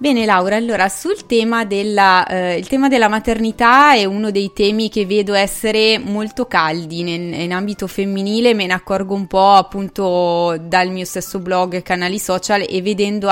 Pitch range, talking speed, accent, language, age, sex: 180-210 Hz, 170 wpm, native, Italian, 20-39, female